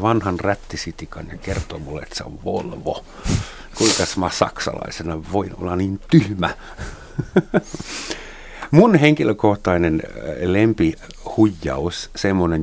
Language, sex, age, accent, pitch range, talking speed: Finnish, male, 60-79, native, 75-95 Hz, 95 wpm